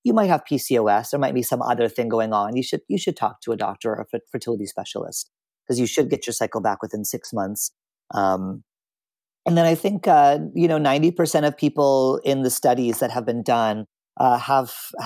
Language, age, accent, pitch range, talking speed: English, 40-59, American, 120-155 Hz, 225 wpm